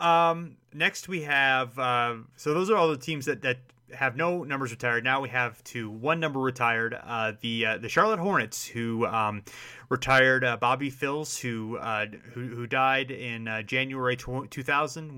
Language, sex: English, male